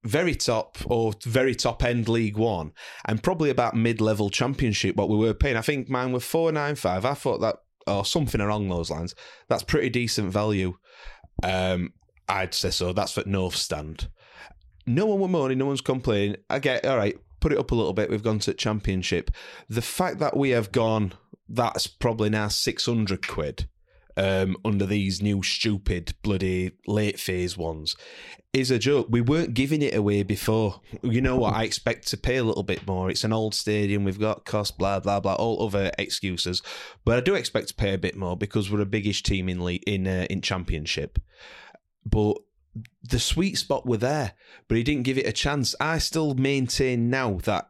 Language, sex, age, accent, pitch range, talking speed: English, male, 30-49, British, 95-125 Hz, 200 wpm